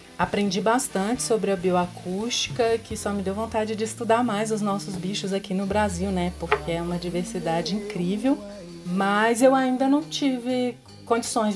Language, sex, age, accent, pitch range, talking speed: Portuguese, female, 30-49, Brazilian, 180-230 Hz, 160 wpm